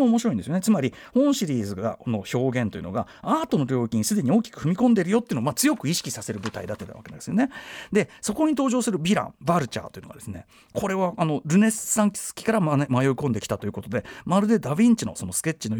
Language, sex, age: Japanese, male, 40-59